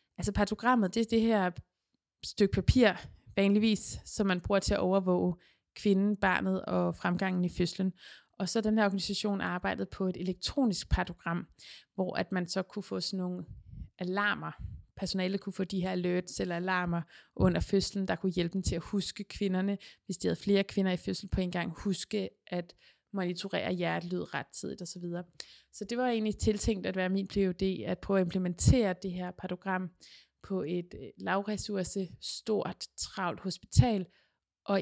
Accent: native